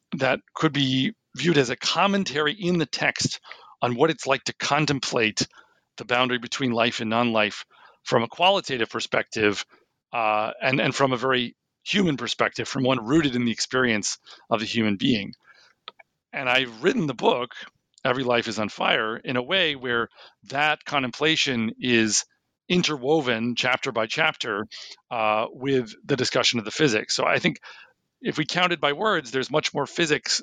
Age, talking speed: 40-59, 165 wpm